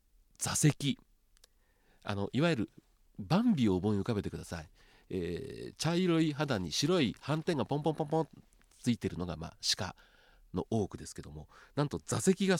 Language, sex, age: Japanese, male, 40-59